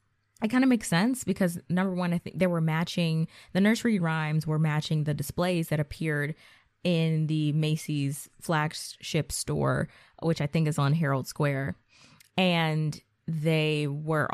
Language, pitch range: English, 145-190 Hz